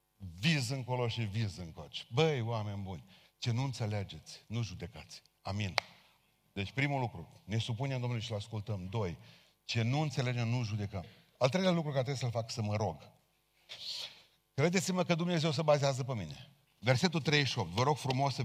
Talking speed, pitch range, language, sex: 165 wpm, 95-135 Hz, Romanian, male